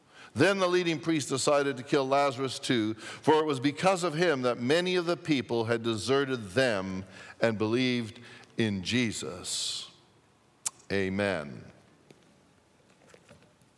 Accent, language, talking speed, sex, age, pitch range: American, English, 120 wpm, male, 50-69, 110-145 Hz